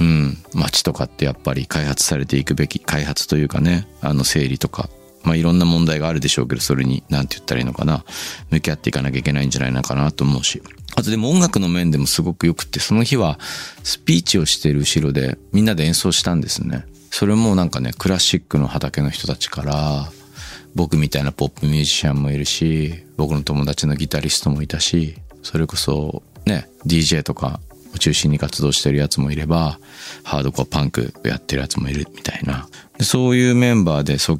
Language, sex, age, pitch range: Japanese, male, 40-59, 70-90 Hz